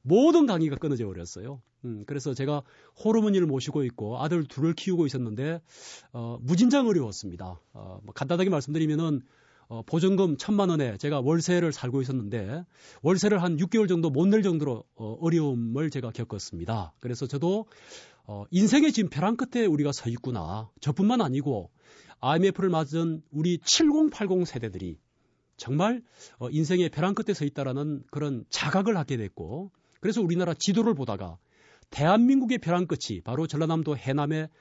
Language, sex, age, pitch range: Korean, male, 40-59, 130-185 Hz